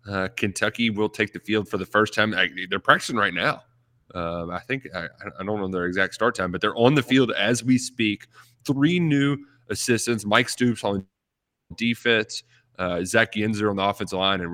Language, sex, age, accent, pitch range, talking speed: English, male, 20-39, American, 95-125 Hz, 200 wpm